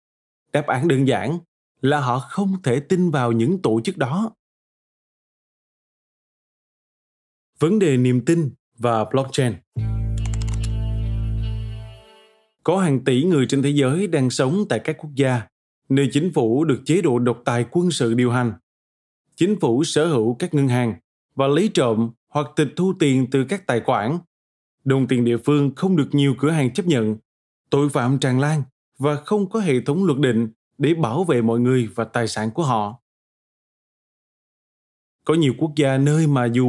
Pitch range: 115-155 Hz